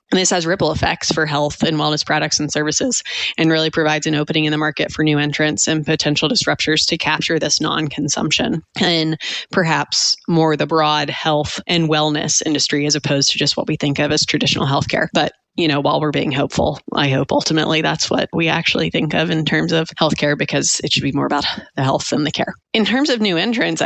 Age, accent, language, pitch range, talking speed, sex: 20-39, American, English, 150-170 Hz, 215 wpm, female